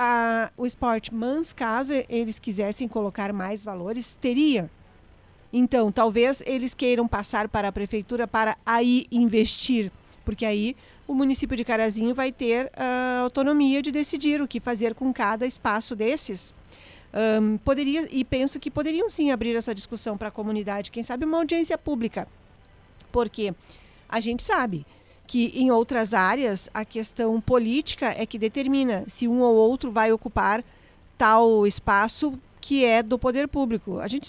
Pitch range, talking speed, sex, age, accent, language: 215-255 Hz, 155 wpm, female, 40-59, Brazilian, Portuguese